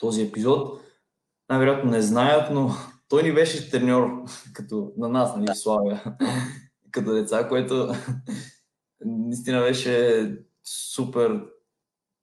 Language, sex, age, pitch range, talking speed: Bulgarian, male, 20-39, 115-190 Hz, 105 wpm